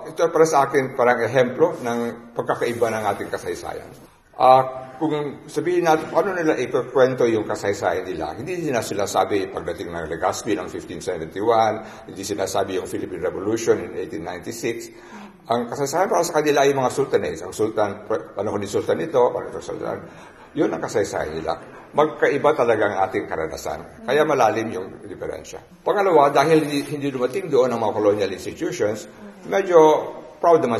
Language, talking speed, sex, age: Filipino, 150 wpm, male, 50-69